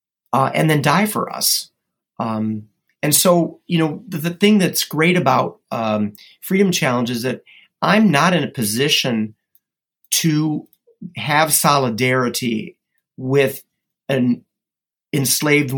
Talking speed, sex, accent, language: 125 wpm, male, American, English